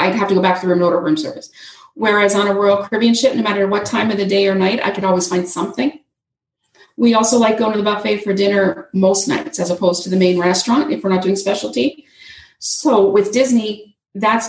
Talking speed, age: 235 wpm, 40-59